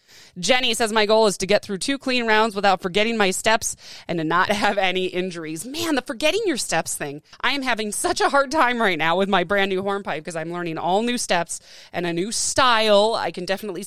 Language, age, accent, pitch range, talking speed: English, 30-49, American, 170-225 Hz, 235 wpm